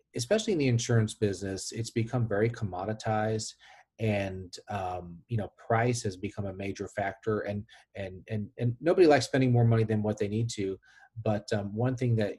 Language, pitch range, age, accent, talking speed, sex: English, 100-115 Hz, 40-59, American, 185 wpm, male